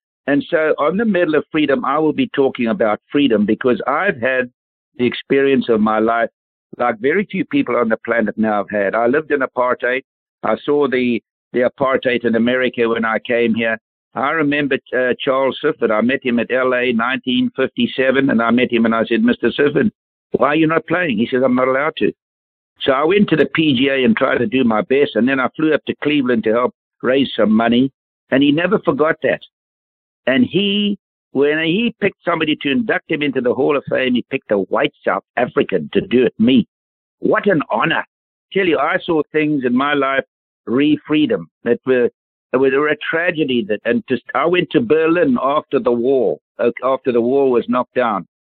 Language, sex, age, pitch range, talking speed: English, male, 60-79, 120-155 Hz, 205 wpm